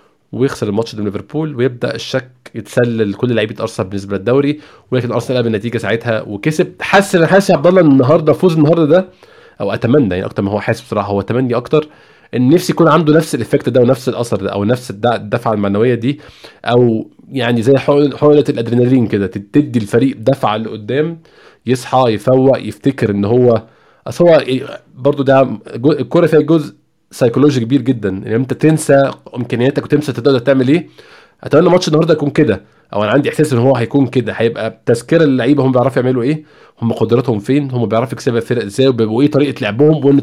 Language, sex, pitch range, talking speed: Arabic, male, 115-145 Hz, 180 wpm